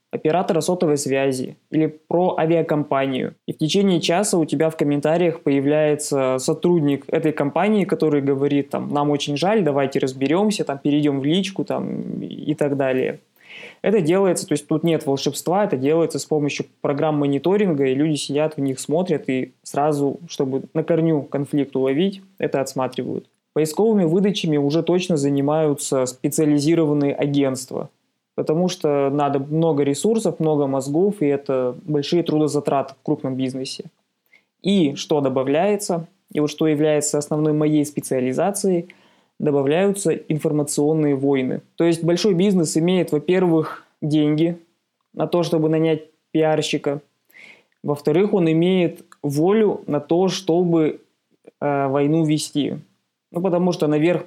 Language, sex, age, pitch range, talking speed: Russian, male, 20-39, 145-170 Hz, 130 wpm